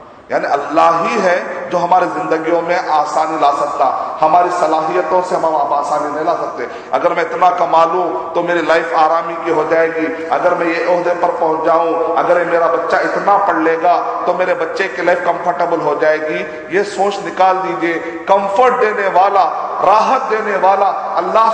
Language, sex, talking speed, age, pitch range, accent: Hindi, male, 180 wpm, 40-59, 165-195 Hz, native